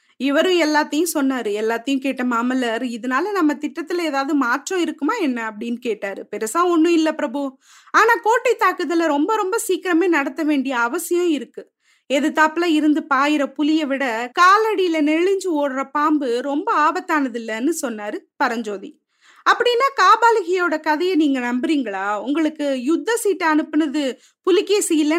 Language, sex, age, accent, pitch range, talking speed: Tamil, female, 20-39, native, 270-350 Hz, 130 wpm